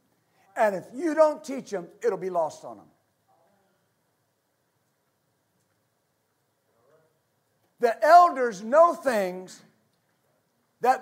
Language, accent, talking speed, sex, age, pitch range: English, American, 85 wpm, male, 50-69, 225-305 Hz